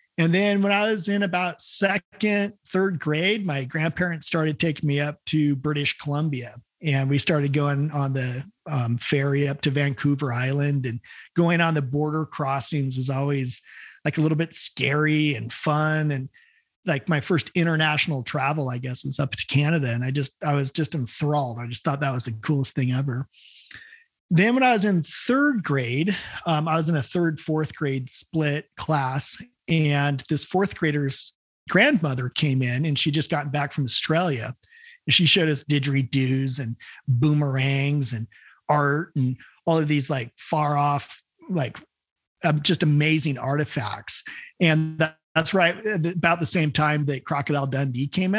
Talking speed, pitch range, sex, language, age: 170 wpm, 135-165 Hz, male, English, 40-59